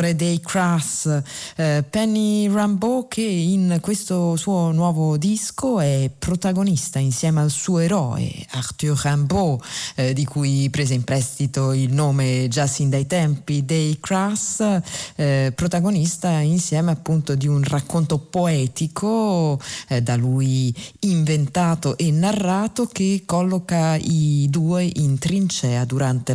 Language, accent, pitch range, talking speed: Italian, native, 135-175 Hz, 125 wpm